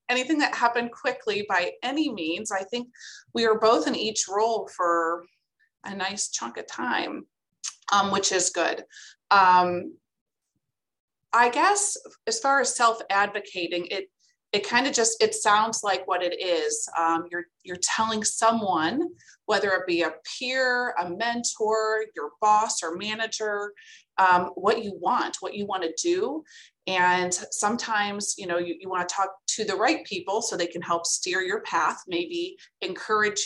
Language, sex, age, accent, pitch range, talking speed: English, female, 30-49, American, 180-245 Hz, 160 wpm